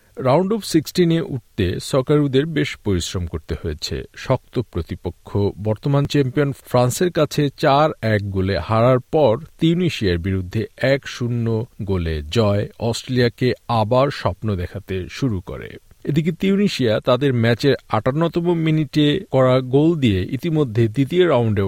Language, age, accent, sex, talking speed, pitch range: Bengali, 50-69, native, male, 120 wpm, 100-145 Hz